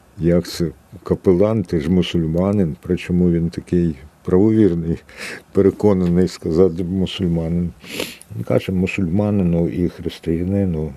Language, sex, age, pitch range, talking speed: Ukrainian, male, 60-79, 85-105 Hz, 100 wpm